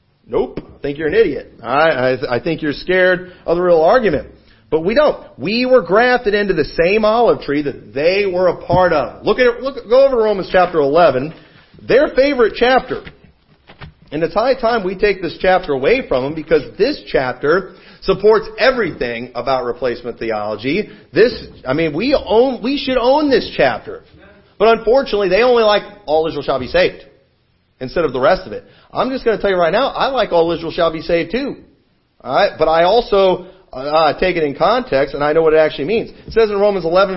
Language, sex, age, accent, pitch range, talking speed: English, male, 40-59, American, 160-235 Hz, 205 wpm